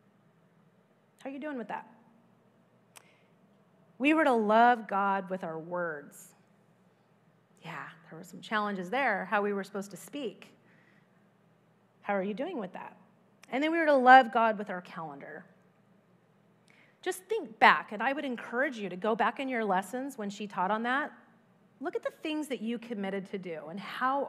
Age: 30-49